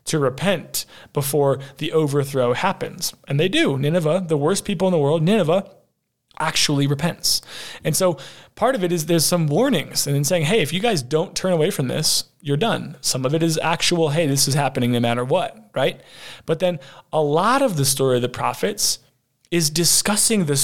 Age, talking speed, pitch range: 20-39, 200 wpm, 140-185 Hz